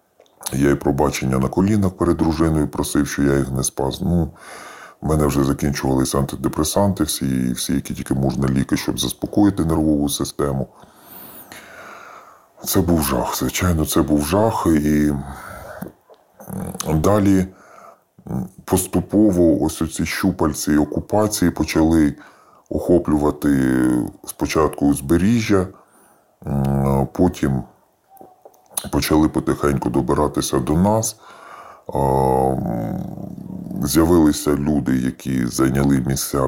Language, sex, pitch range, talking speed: Ukrainian, female, 70-85 Hz, 100 wpm